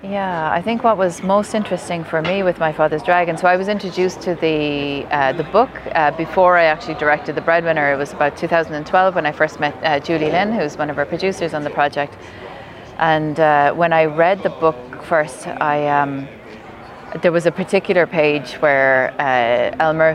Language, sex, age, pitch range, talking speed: Italian, female, 30-49, 145-170 Hz, 195 wpm